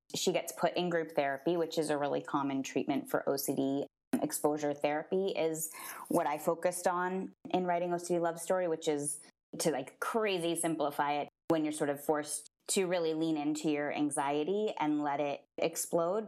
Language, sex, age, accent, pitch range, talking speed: English, female, 20-39, American, 145-175 Hz, 175 wpm